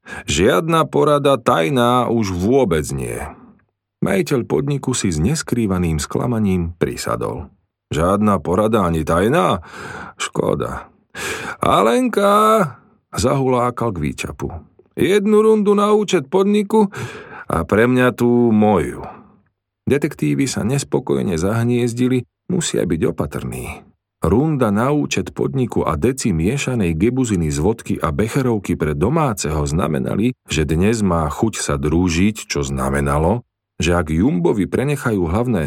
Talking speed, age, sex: 110 wpm, 40-59, male